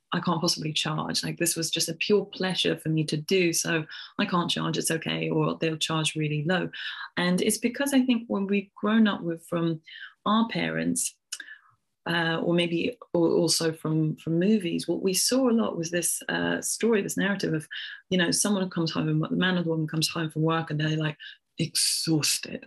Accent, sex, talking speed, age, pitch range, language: British, female, 205 wpm, 20-39, 155-195 Hz, English